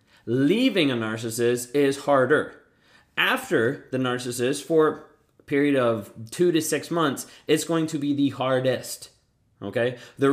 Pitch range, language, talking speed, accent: 120-150 Hz, English, 140 wpm, American